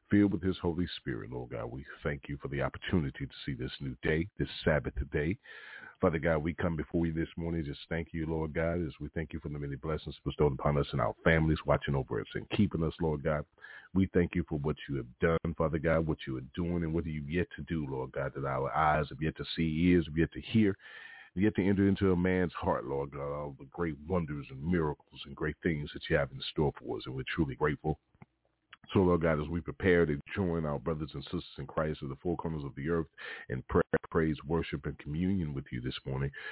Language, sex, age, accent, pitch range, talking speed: English, male, 40-59, American, 75-85 Hz, 245 wpm